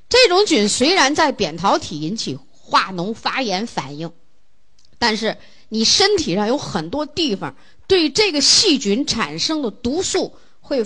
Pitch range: 180-280 Hz